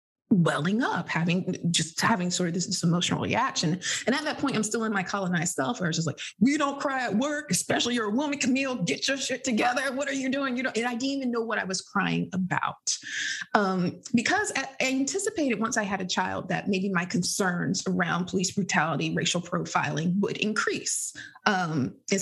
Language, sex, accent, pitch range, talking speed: English, female, American, 175-245 Hz, 210 wpm